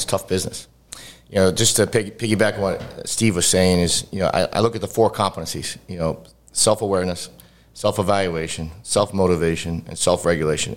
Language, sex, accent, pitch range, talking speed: English, male, American, 80-100 Hz, 160 wpm